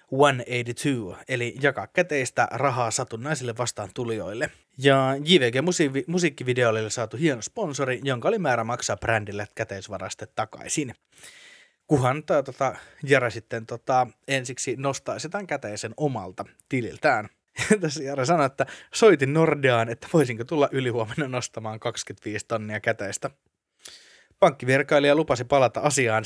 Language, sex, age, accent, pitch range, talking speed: Finnish, male, 20-39, native, 115-145 Hz, 115 wpm